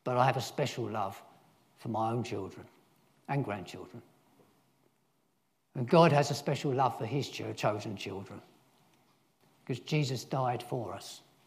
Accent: British